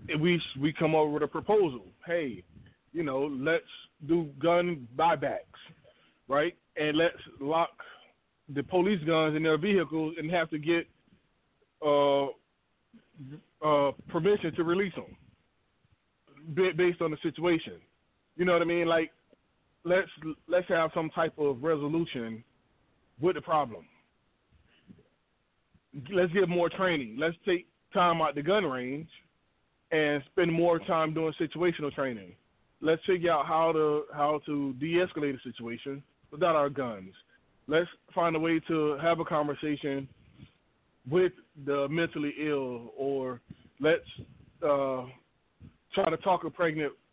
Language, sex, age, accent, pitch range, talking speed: English, male, 20-39, American, 140-170 Hz, 135 wpm